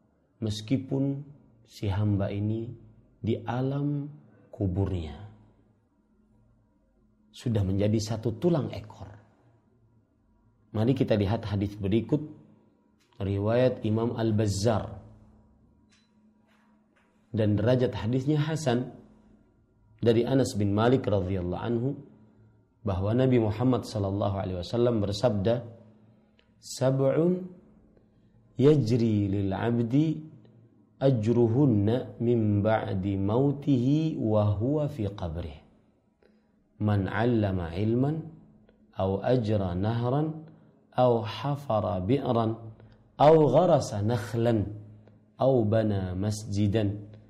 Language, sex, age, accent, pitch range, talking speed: Indonesian, male, 40-59, native, 105-125 Hz, 80 wpm